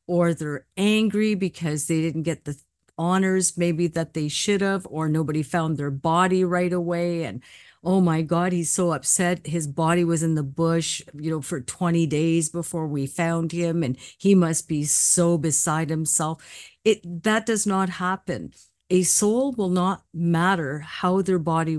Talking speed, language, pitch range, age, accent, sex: 175 wpm, English, 160-190 Hz, 50-69, American, female